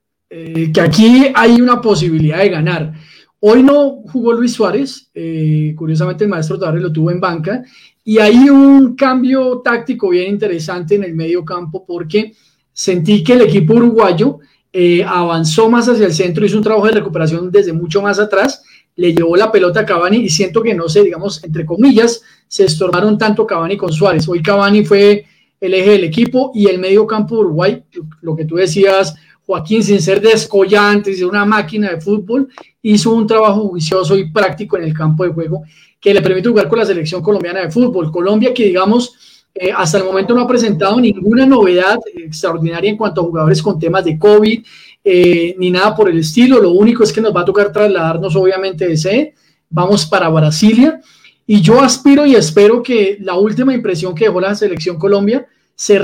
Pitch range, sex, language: 180-220 Hz, male, Spanish